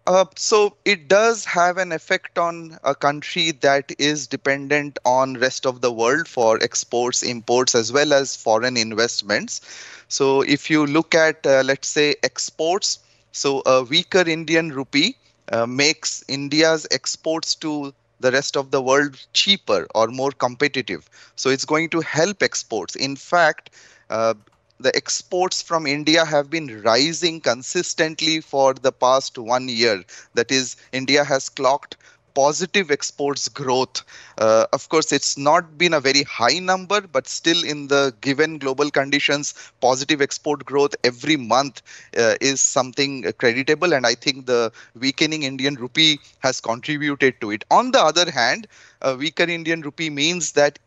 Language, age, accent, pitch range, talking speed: English, 20-39, Indian, 130-160 Hz, 155 wpm